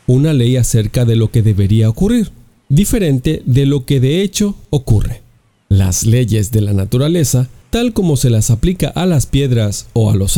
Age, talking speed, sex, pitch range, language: 40-59, 180 wpm, male, 115-170 Hz, English